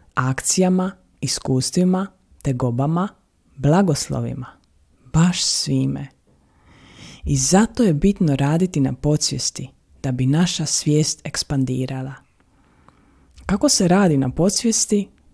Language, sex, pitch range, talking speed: Croatian, female, 125-175 Hz, 95 wpm